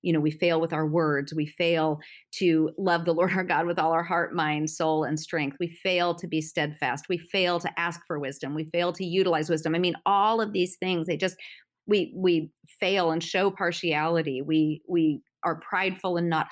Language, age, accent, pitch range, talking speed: English, 40-59, American, 155-185 Hz, 215 wpm